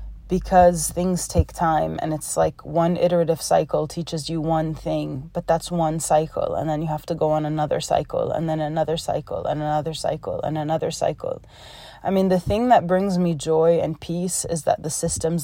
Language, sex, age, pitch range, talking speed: English, female, 20-39, 155-175 Hz, 200 wpm